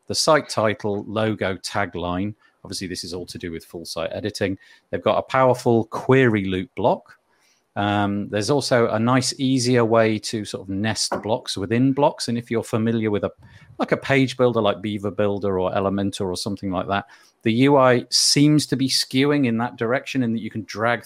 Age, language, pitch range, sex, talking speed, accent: 40-59, English, 100-120 Hz, male, 200 wpm, British